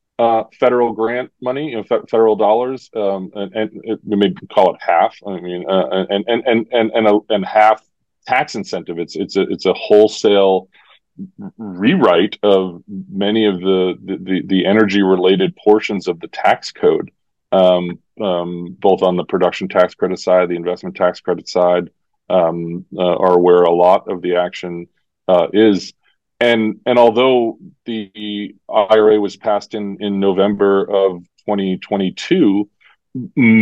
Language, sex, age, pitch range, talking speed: English, male, 30-49, 90-110 Hz, 160 wpm